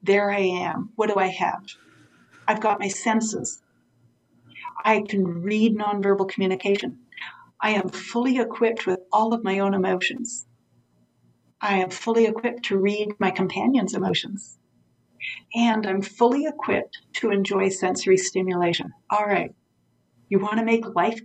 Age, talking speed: 60-79, 140 wpm